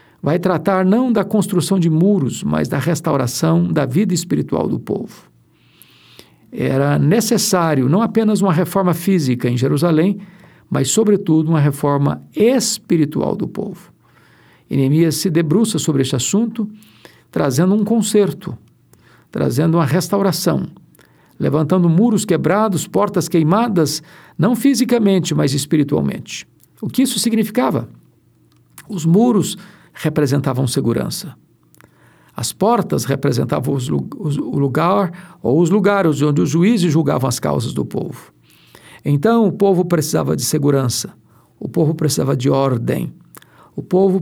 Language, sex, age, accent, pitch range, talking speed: Portuguese, male, 60-79, Brazilian, 150-200 Hz, 120 wpm